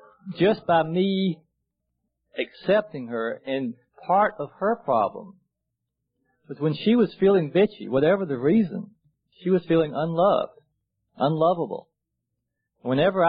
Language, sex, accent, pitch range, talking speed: English, male, American, 135-175 Hz, 115 wpm